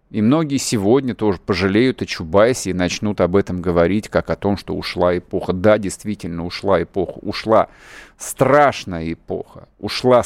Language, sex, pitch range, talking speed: Russian, male, 100-130 Hz, 150 wpm